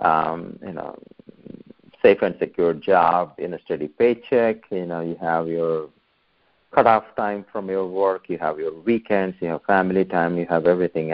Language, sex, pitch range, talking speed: English, male, 85-105 Hz, 170 wpm